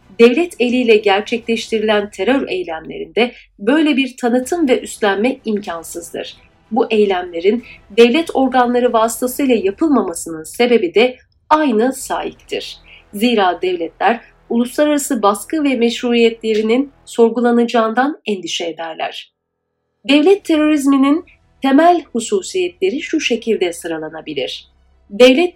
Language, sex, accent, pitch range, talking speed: Turkish, female, native, 210-285 Hz, 90 wpm